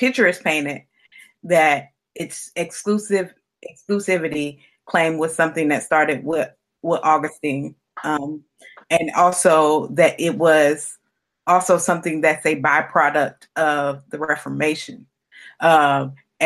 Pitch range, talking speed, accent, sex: 145-165 Hz, 110 wpm, American, female